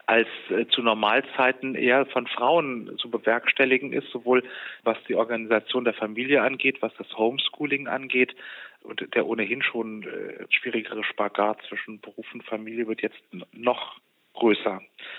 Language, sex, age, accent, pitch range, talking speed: German, male, 40-59, German, 110-130 Hz, 135 wpm